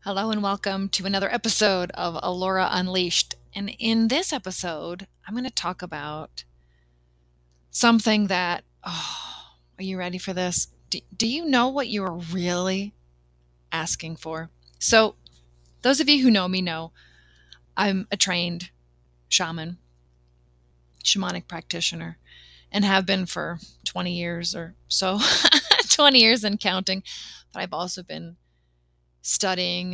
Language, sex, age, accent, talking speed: English, female, 30-49, American, 130 wpm